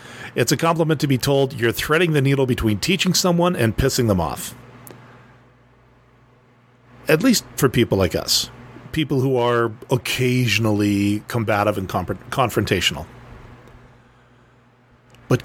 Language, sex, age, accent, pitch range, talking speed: English, male, 40-59, American, 115-135 Hz, 120 wpm